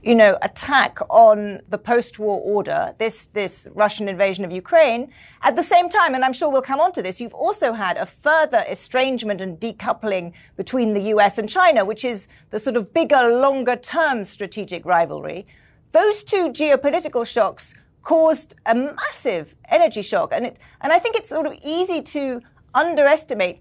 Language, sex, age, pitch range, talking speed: English, female, 40-59, 205-305 Hz, 175 wpm